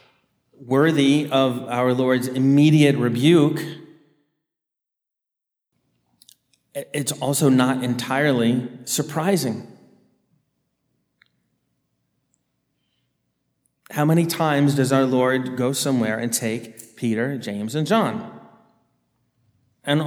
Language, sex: English, male